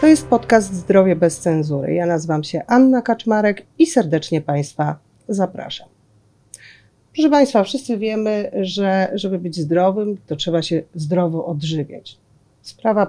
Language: Polish